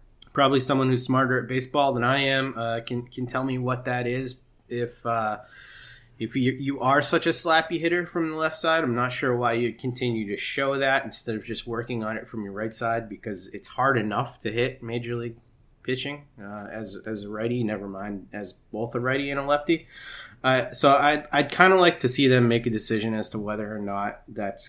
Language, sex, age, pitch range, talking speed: English, male, 30-49, 110-135 Hz, 225 wpm